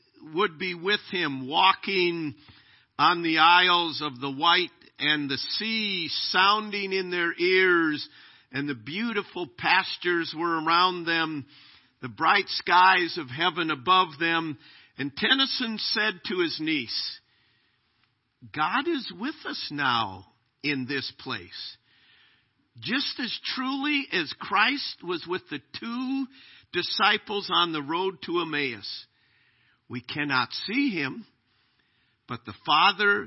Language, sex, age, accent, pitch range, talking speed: English, male, 50-69, American, 140-210 Hz, 125 wpm